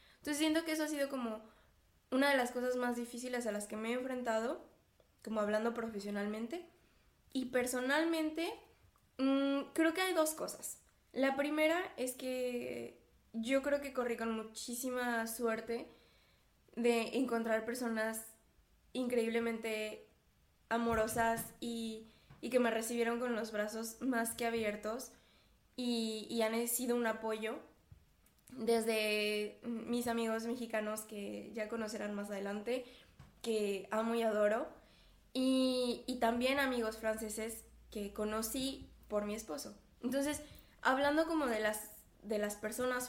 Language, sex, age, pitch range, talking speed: Spanish, female, 20-39, 220-250 Hz, 130 wpm